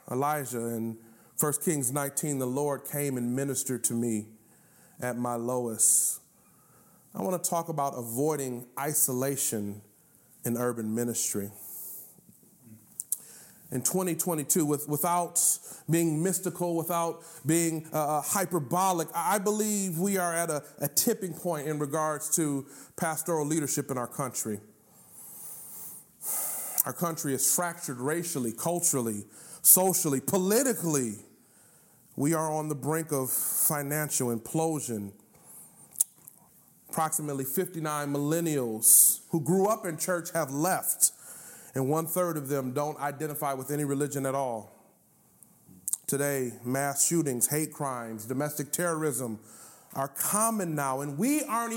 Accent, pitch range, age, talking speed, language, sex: American, 130-170 Hz, 30-49, 120 wpm, English, male